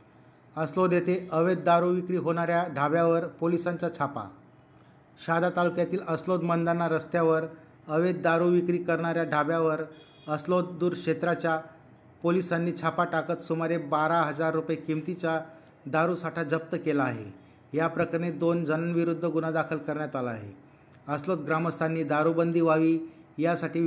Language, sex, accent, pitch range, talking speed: Marathi, male, native, 155-170 Hz, 120 wpm